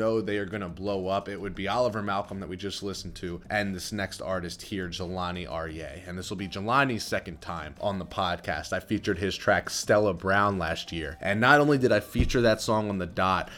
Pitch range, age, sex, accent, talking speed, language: 90-110 Hz, 30-49, male, American, 225 wpm, English